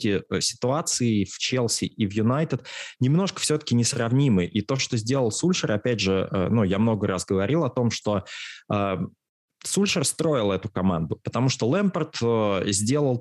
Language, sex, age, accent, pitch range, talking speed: Russian, male, 20-39, native, 100-130 Hz, 145 wpm